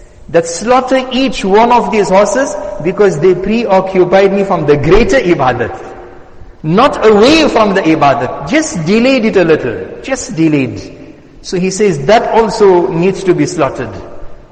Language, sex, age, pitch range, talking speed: English, male, 60-79, 160-220 Hz, 150 wpm